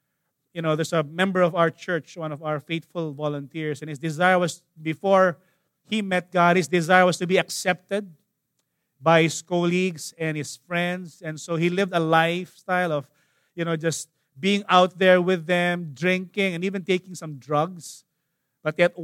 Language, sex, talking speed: English, male, 175 wpm